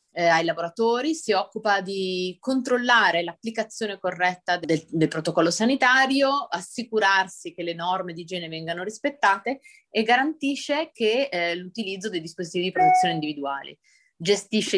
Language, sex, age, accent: Italian, female, 30-49, native